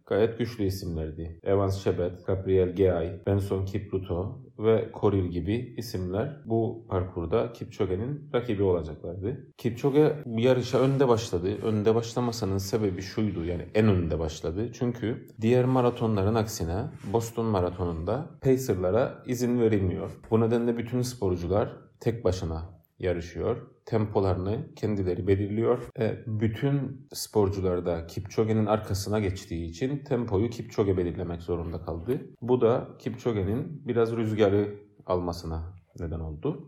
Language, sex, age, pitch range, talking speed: Turkish, male, 30-49, 95-120 Hz, 115 wpm